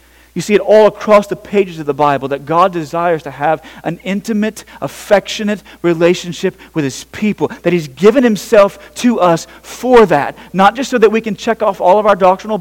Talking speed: 200 wpm